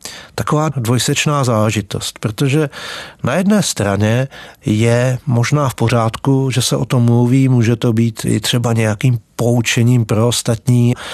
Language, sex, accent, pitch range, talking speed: Czech, male, native, 115-140 Hz, 135 wpm